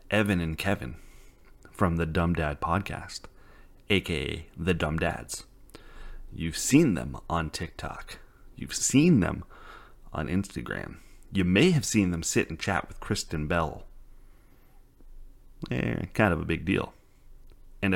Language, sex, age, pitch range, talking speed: English, male, 30-49, 80-100 Hz, 135 wpm